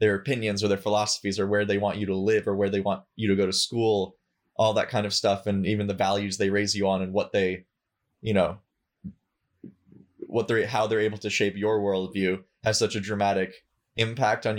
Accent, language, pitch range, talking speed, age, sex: American, English, 100-115 Hz, 220 wpm, 20-39, male